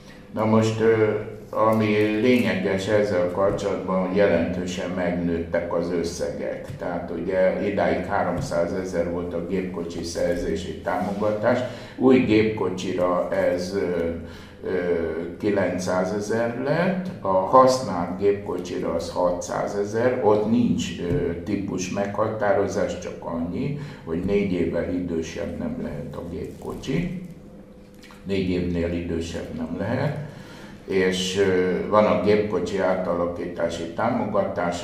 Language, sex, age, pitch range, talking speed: Hungarian, male, 60-79, 85-100 Hz, 100 wpm